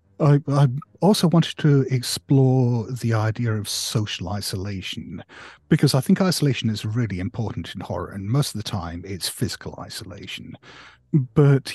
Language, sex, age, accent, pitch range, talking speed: English, male, 50-69, British, 100-140 Hz, 150 wpm